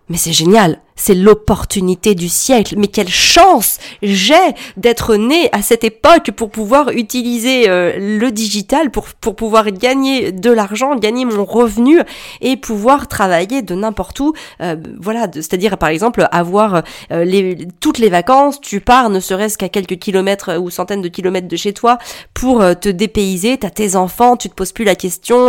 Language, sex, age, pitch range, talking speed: French, female, 30-49, 195-245 Hz, 175 wpm